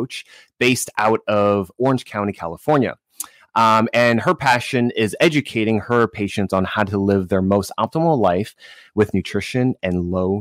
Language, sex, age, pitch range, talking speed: English, male, 20-39, 95-120 Hz, 150 wpm